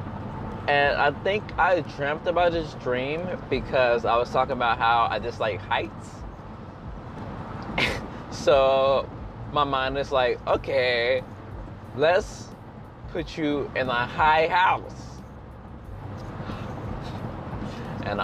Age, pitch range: 20-39, 110-140 Hz